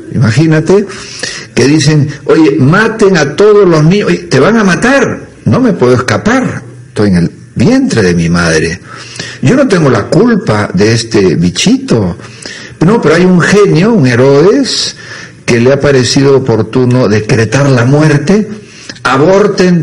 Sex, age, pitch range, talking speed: male, 60-79, 115-165 Hz, 150 wpm